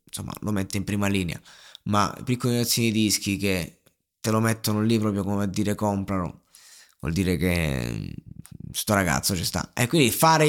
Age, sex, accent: 20-39, male, native